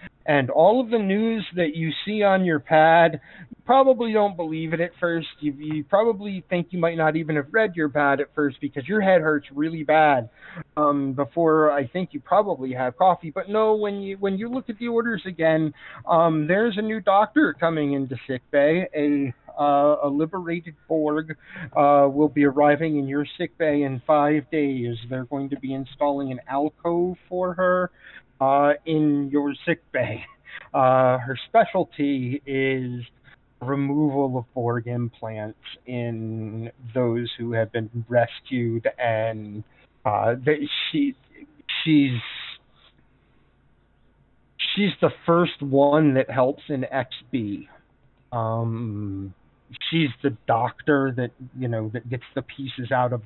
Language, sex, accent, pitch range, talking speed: English, male, American, 125-170 Hz, 155 wpm